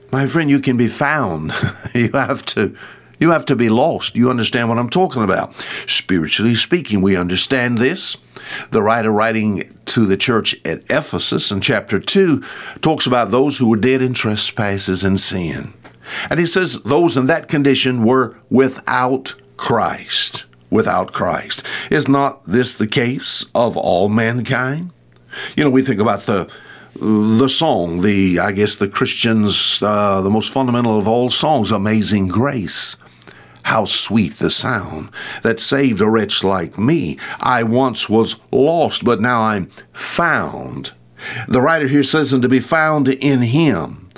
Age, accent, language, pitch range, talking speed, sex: 60-79, American, English, 110-140 Hz, 160 wpm, male